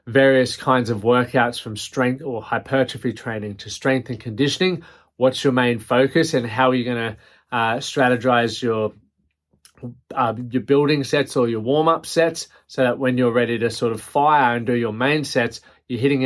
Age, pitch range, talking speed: 20-39, 120-145 Hz, 175 wpm